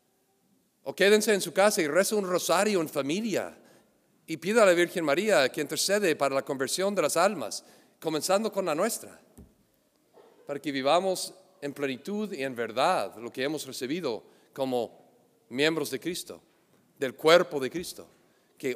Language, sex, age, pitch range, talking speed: English, male, 50-69, 135-190 Hz, 160 wpm